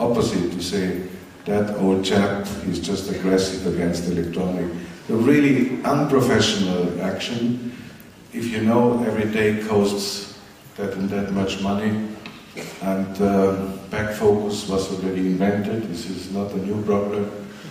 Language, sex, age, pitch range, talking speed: German, male, 50-69, 95-115 Hz, 130 wpm